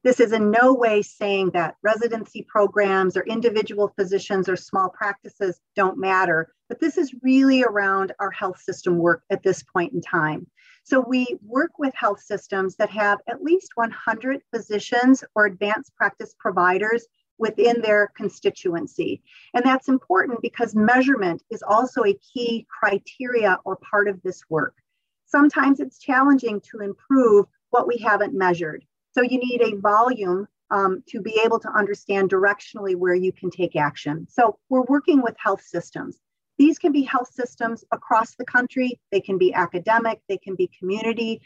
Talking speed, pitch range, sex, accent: 165 wpm, 195-250 Hz, female, American